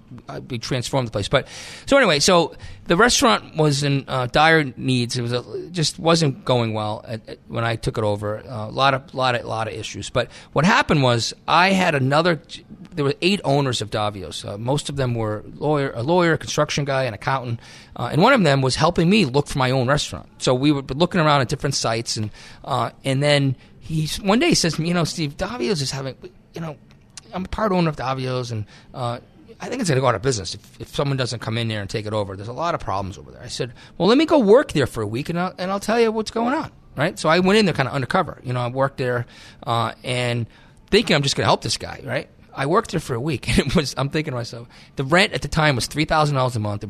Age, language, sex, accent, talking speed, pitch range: 30-49, English, male, American, 260 wpm, 115-155 Hz